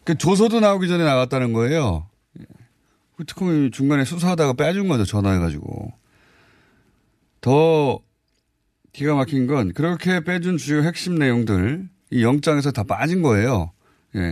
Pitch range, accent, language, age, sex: 110-155 Hz, native, Korean, 30-49, male